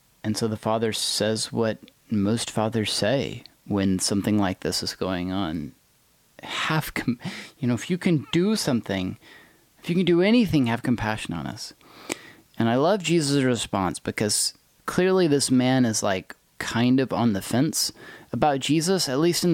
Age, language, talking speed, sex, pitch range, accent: 30-49, English, 165 wpm, male, 100-140 Hz, American